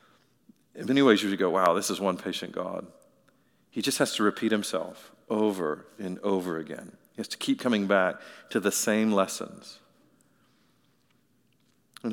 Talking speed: 165 wpm